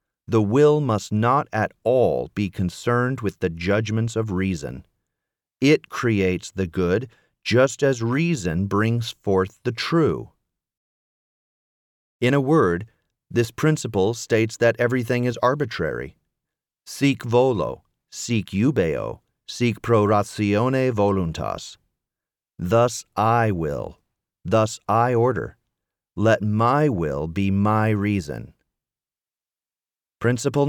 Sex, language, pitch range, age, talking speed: male, English, 100-130 Hz, 40-59, 105 wpm